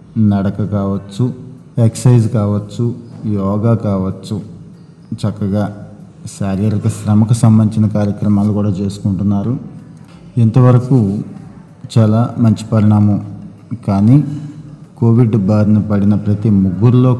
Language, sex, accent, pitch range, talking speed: Telugu, male, native, 100-125 Hz, 80 wpm